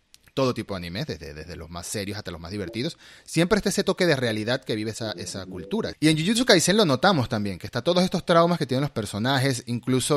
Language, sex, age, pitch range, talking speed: Spanish, male, 30-49, 110-140 Hz, 240 wpm